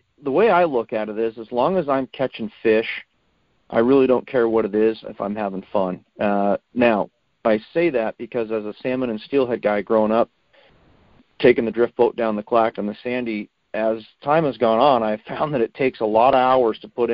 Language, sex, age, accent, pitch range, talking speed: English, male, 40-59, American, 110-130 Hz, 225 wpm